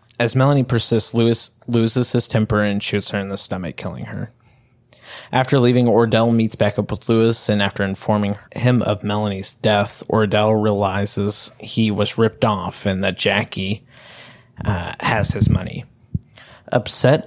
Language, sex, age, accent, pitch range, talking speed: English, male, 20-39, American, 100-115 Hz, 155 wpm